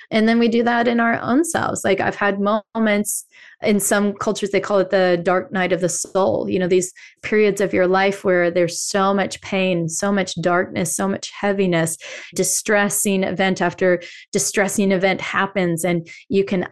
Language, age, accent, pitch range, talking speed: English, 20-39, American, 185-210 Hz, 185 wpm